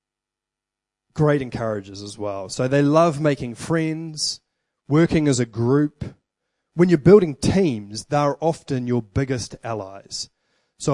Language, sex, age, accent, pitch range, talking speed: English, male, 20-39, Australian, 120-160 Hz, 125 wpm